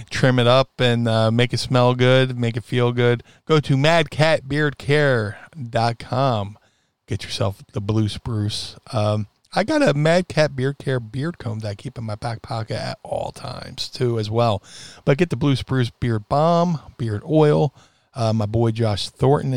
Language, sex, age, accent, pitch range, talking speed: English, male, 40-59, American, 110-135 Hz, 180 wpm